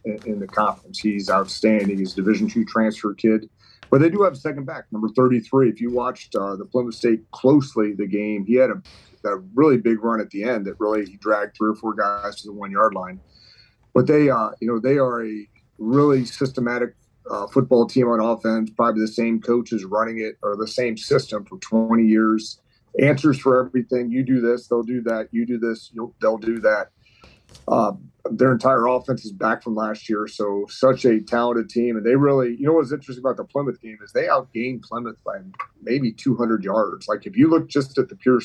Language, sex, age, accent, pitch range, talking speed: English, male, 40-59, American, 110-125 Hz, 215 wpm